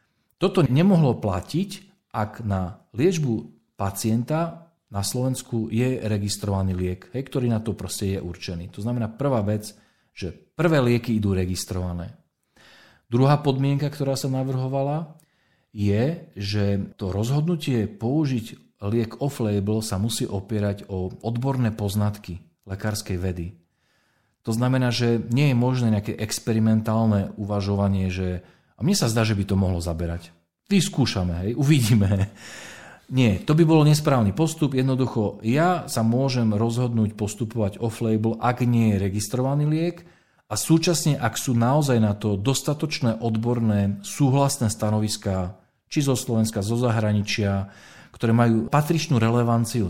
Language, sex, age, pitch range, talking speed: Slovak, male, 40-59, 100-135 Hz, 125 wpm